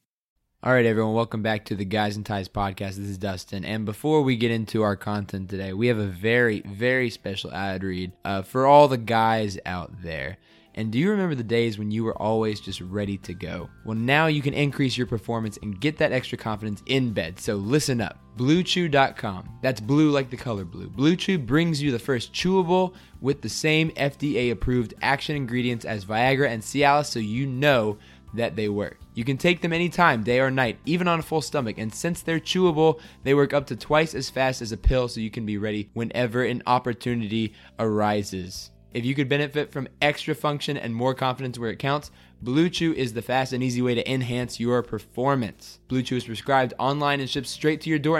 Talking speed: 210 wpm